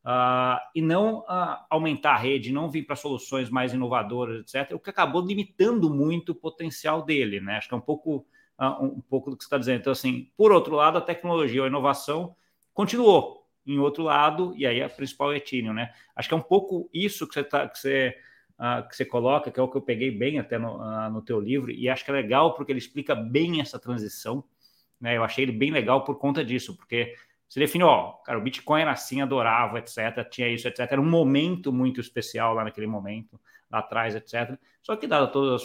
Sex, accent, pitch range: male, Brazilian, 125-160 Hz